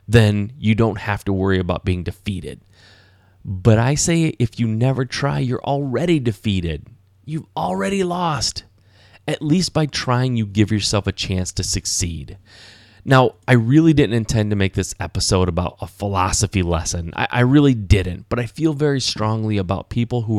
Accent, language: American, English